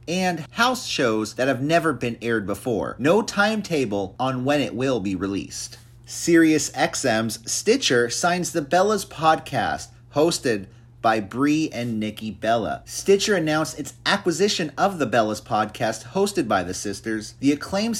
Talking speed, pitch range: 145 wpm, 120-180 Hz